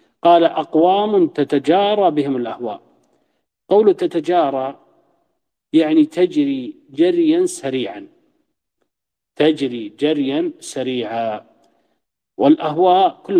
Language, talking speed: Arabic, 70 wpm